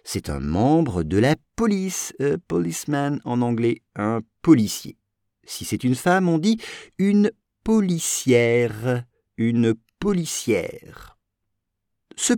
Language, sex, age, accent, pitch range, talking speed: English, male, 50-69, French, 100-170 Hz, 105 wpm